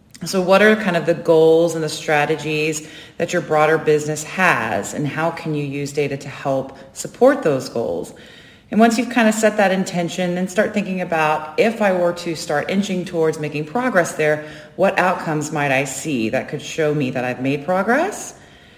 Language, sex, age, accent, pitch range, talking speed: English, female, 30-49, American, 150-190 Hz, 195 wpm